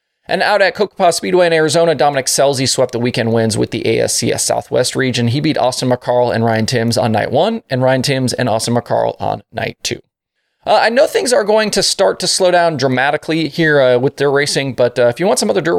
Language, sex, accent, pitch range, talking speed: English, male, American, 120-170 Hz, 235 wpm